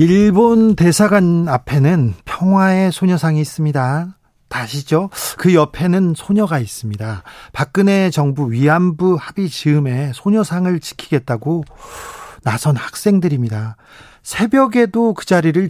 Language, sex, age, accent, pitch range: Korean, male, 40-59, native, 140-190 Hz